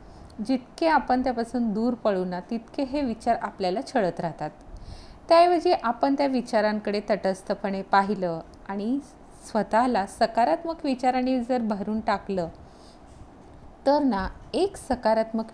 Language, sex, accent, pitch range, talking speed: Marathi, female, native, 190-250 Hz, 110 wpm